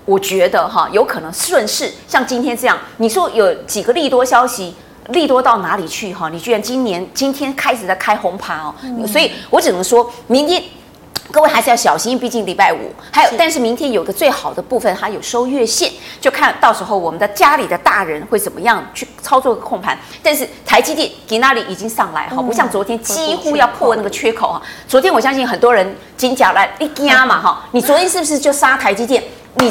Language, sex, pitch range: Chinese, female, 220-285 Hz